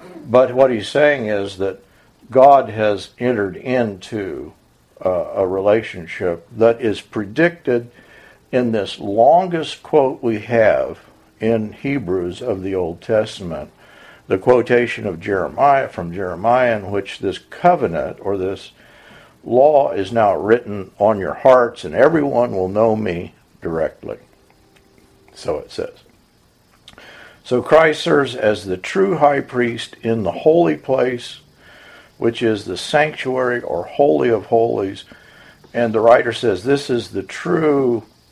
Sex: male